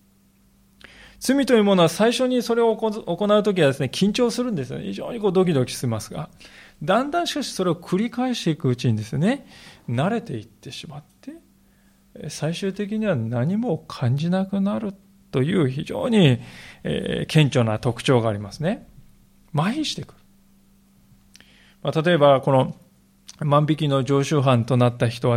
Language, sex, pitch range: Japanese, male, 125-195 Hz